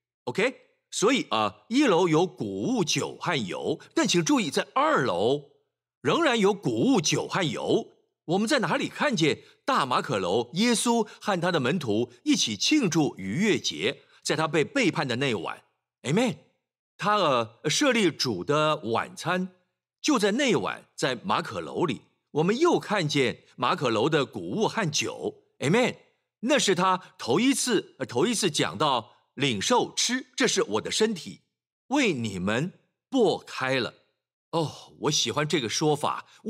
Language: Chinese